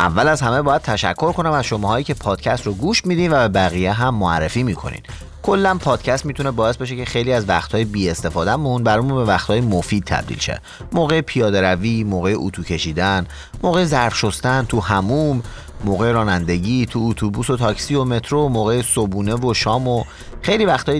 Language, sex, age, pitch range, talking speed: Persian, male, 30-49, 95-130 Hz, 175 wpm